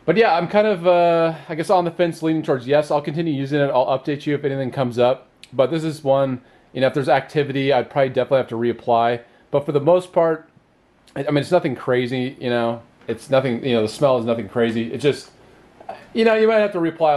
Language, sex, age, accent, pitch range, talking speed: English, male, 30-49, American, 115-150 Hz, 245 wpm